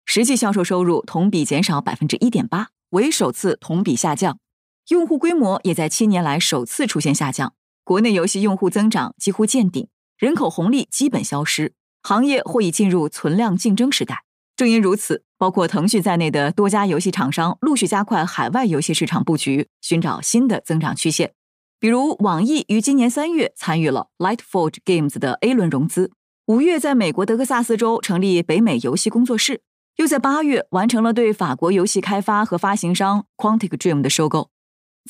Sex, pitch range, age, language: female, 165-230 Hz, 20-39, Chinese